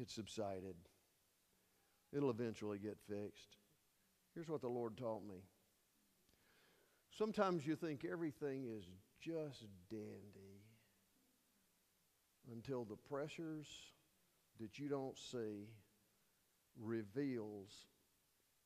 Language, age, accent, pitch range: English, 50-69, American, 105-130 Hz